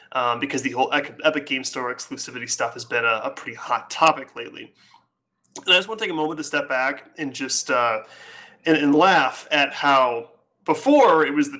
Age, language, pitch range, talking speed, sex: 30-49, English, 135-195 Hz, 205 wpm, male